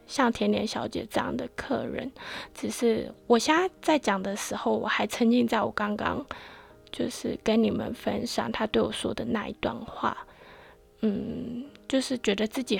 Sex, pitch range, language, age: female, 220-255 Hz, Chinese, 20-39